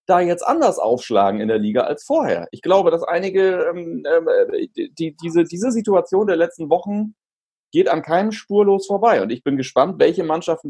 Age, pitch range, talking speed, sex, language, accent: 40-59, 140-215 Hz, 185 wpm, male, German, German